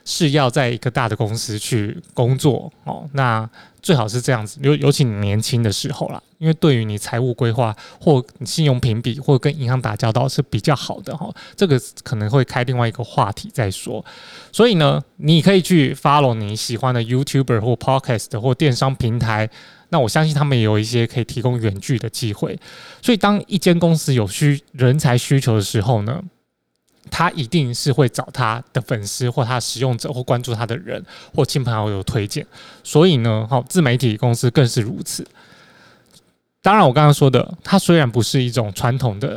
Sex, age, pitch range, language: male, 20-39, 115-150 Hz, Chinese